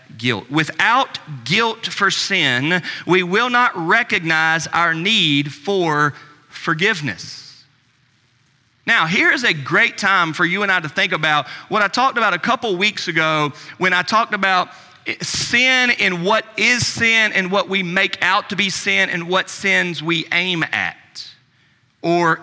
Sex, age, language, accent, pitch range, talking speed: male, 40-59, English, American, 135-195 Hz, 155 wpm